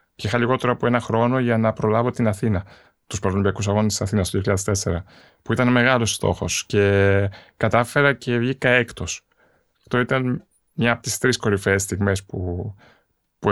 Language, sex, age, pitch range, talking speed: Greek, male, 20-39, 100-125 Hz, 165 wpm